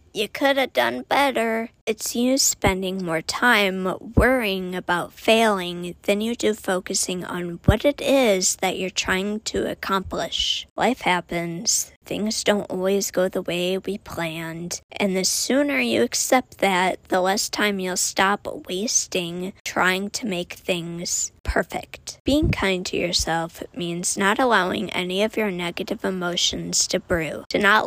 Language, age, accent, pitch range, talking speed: English, 20-39, American, 180-220 Hz, 150 wpm